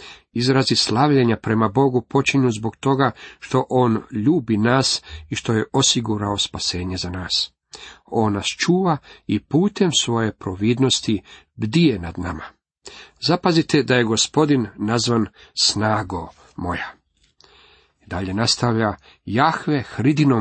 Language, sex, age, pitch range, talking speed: Croatian, male, 50-69, 100-135 Hz, 115 wpm